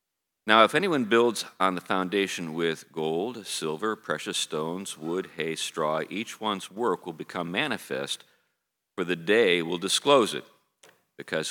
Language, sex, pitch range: English, male, 80-100 Hz